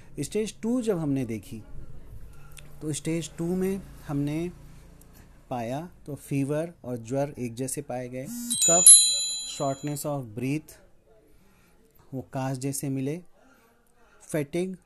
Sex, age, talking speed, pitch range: male, 30-49, 115 wpm, 125-155 Hz